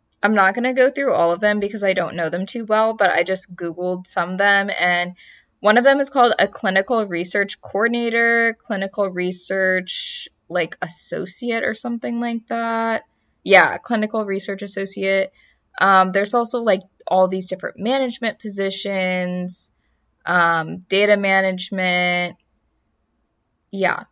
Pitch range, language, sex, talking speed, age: 175-225 Hz, English, female, 140 wpm, 20-39